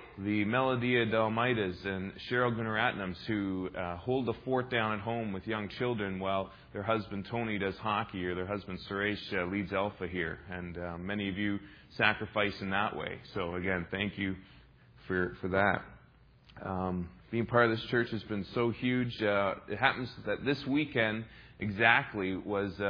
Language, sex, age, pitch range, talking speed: English, male, 30-49, 95-115 Hz, 175 wpm